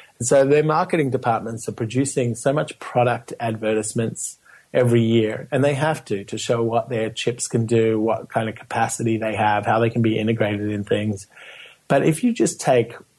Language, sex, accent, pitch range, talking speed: English, male, Australian, 110-135 Hz, 185 wpm